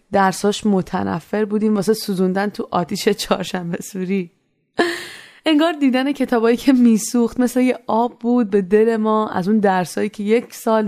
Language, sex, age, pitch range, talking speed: Persian, female, 20-39, 200-240 Hz, 145 wpm